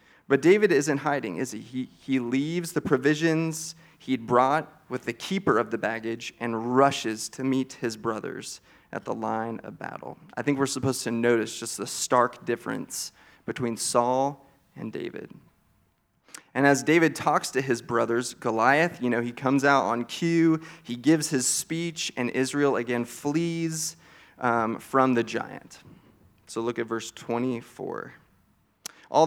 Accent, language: American, English